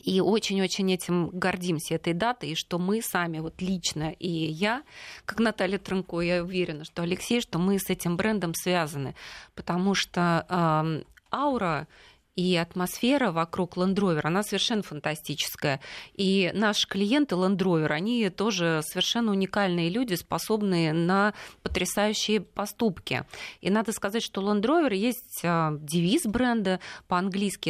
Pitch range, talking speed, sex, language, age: 165-205 Hz, 130 wpm, female, Russian, 30-49